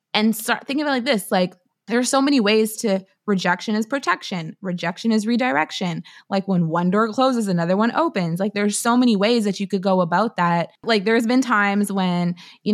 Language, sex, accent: English, female, American